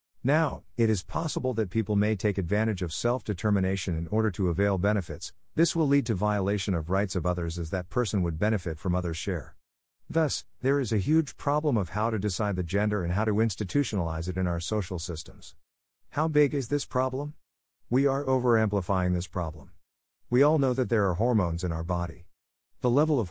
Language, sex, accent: English, male, American